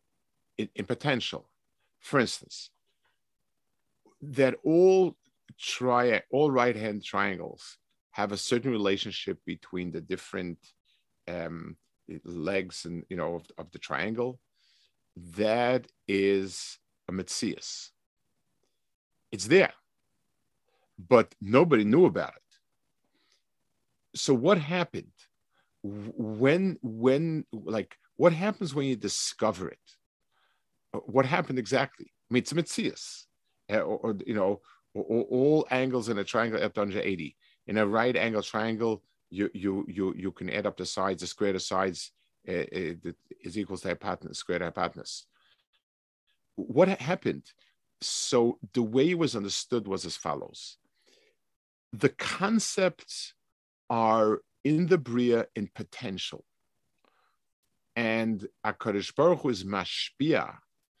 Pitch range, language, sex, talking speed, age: 95-135 Hz, English, male, 120 wpm, 50-69